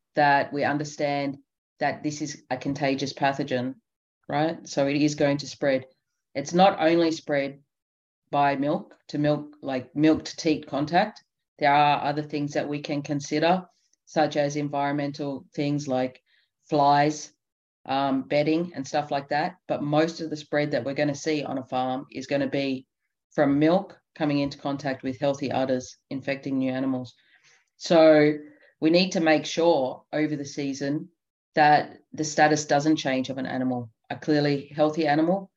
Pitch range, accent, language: 135-155 Hz, Australian, English